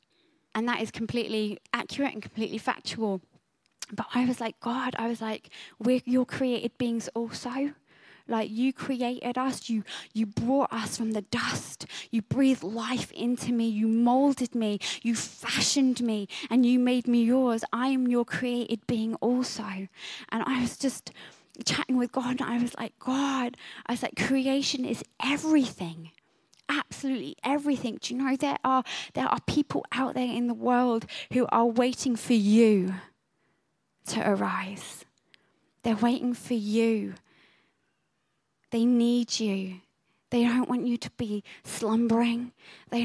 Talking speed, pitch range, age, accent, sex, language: 150 wpm, 220-250 Hz, 20-39, British, female, English